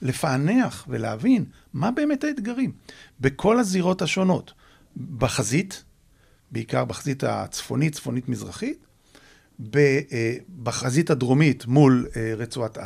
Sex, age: male, 50-69